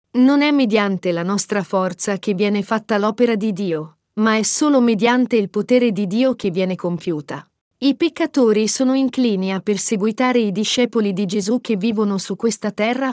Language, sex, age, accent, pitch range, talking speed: Italian, female, 40-59, native, 200-260 Hz, 175 wpm